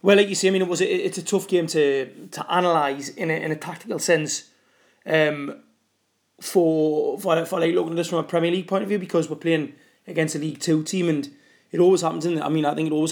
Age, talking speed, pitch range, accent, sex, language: 20-39, 255 wpm, 150-180 Hz, British, male, English